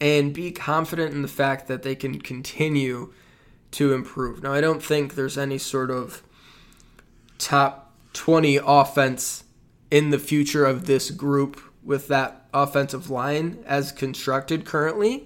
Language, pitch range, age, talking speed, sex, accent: English, 135-155 Hz, 20-39, 140 wpm, male, American